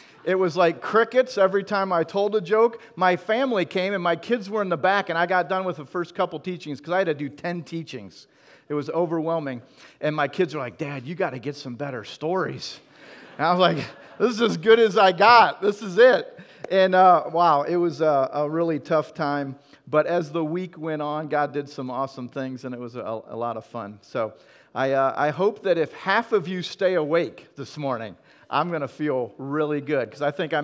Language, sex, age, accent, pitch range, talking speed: English, male, 40-59, American, 150-200 Hz, 235 wpm